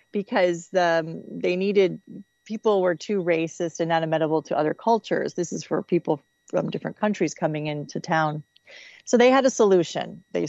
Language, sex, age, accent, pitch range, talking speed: English, female, 30-49, American, 165-200 Hz, 170 wpm